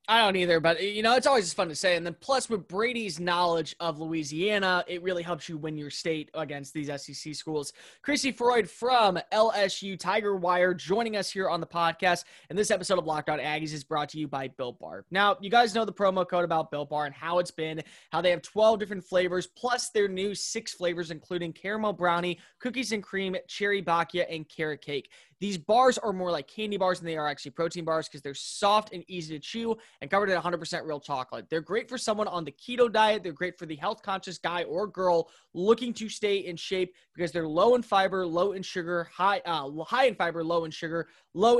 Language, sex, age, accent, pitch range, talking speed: English, male, 20-39, American, 165-205 Hz, 225 wpm